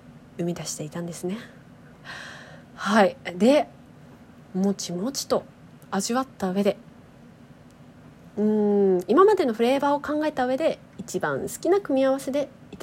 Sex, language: female, Japanese